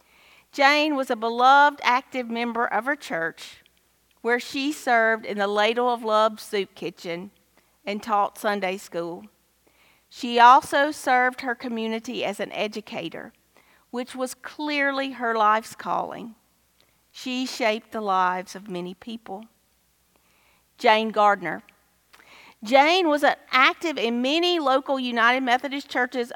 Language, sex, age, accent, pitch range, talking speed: English, female, 40-59, American, 205-260 Hz, 125 wpm